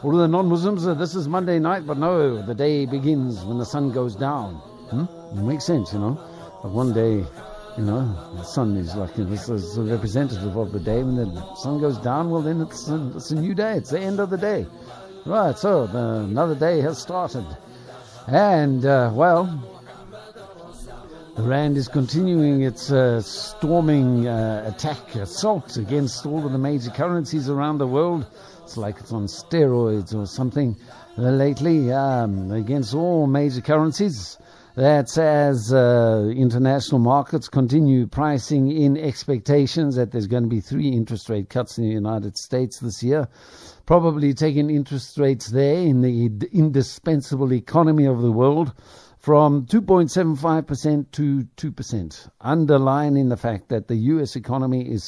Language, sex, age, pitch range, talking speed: English, male, 60-79, 115-155 Hz, 165 wpm